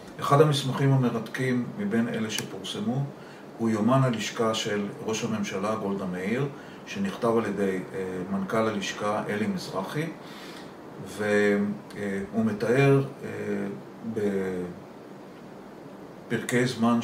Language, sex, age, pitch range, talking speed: Hebrew, male, 40-59, 100-125 Hz, 90 wpm